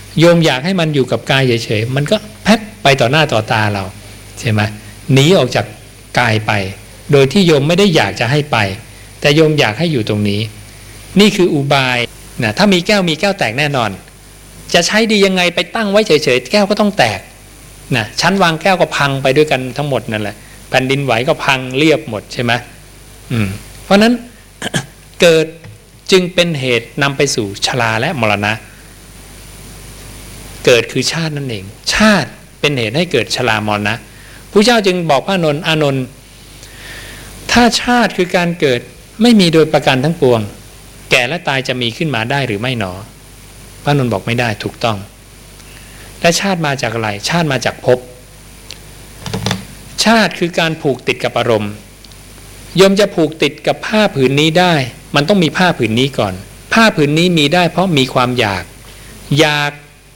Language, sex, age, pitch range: English, male, 60-79, 115-165 Hz